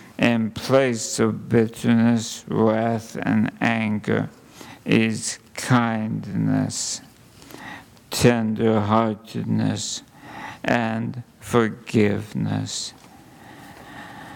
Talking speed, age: 50 wpm, 50-69